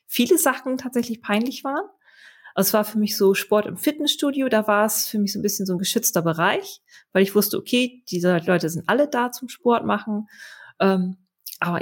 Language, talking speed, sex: German, 195 wpm, female